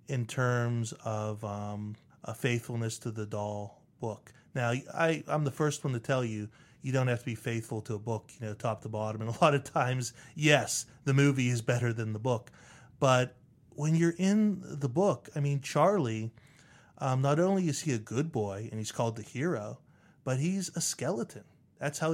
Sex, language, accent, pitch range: male, English, American, 120-155 Hz